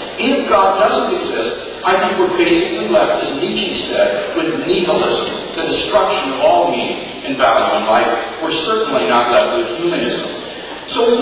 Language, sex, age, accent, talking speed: English, male, 50-69, American, 160 wpm